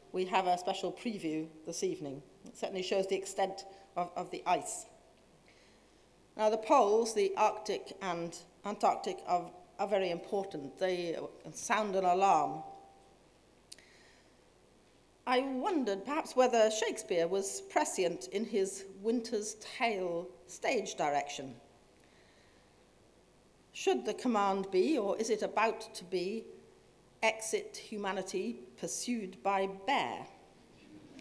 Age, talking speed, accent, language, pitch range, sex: 40-59, 115 wpm, British, English, 180-220 Hz, female